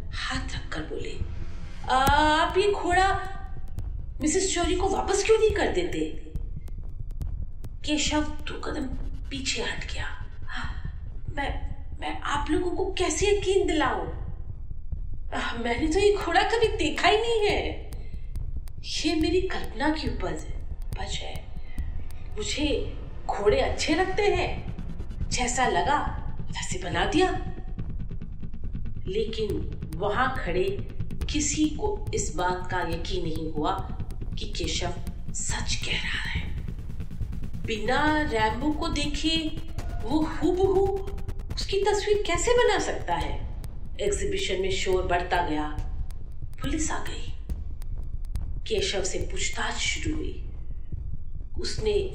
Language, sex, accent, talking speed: Hindi, female, native, 110 wpm